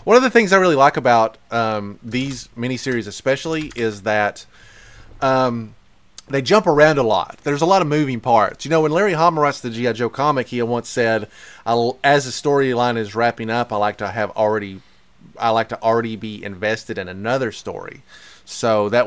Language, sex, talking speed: English, male, 190 wpm